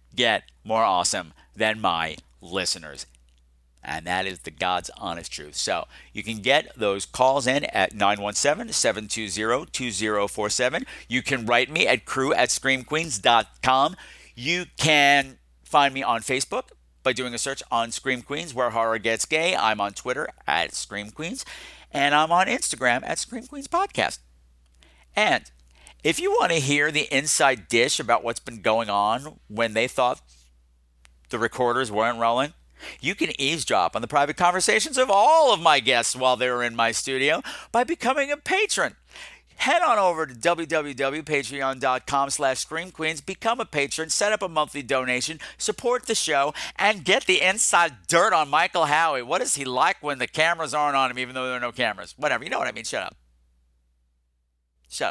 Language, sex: English, male